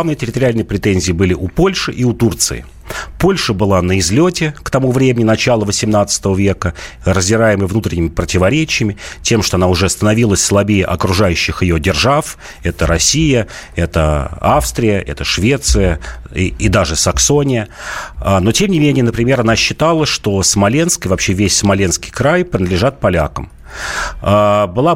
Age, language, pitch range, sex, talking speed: 40-59, Russian, 90-125 Hz, male, 135 wpm